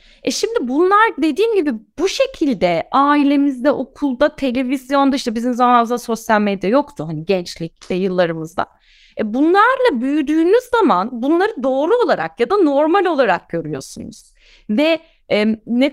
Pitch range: 200-285 Hz